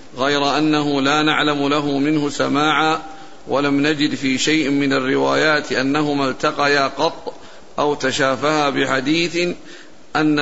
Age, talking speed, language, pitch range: 50-69, 115 wpm, Arabic, 145-155 Hz